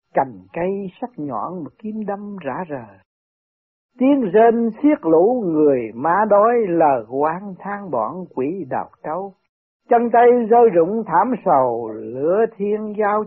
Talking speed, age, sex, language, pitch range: 145 wpm, 60-79, male, Vietnamese, 150-230 Hz